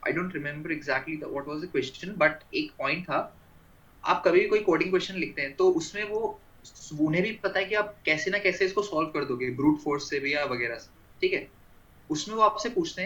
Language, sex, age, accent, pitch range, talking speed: Hindi, male, 20-39, native, 155-220 Hz, 200 wpm